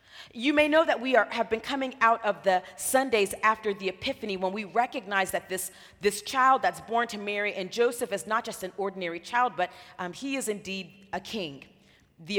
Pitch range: 200-260 Hz